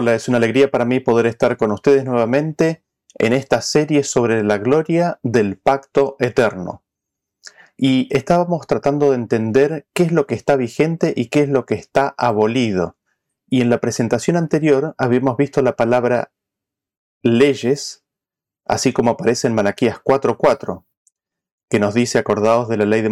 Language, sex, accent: Spanish, male, Argentinian